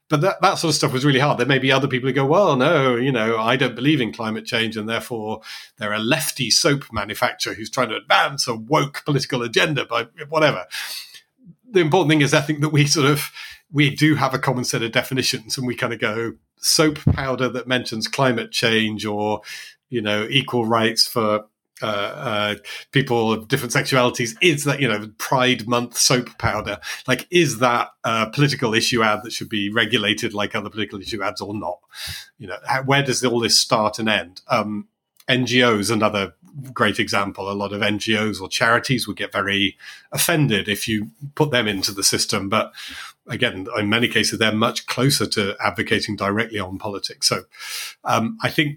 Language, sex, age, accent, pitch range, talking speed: English, male, 40-59, British, 110-135 Hz, 195 wpm